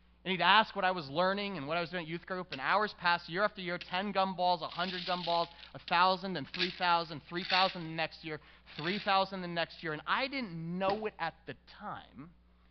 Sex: male